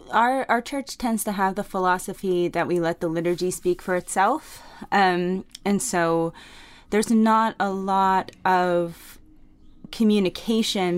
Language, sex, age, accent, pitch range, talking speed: English, female, 20-39, American, 165-190 Hz, 135 wpm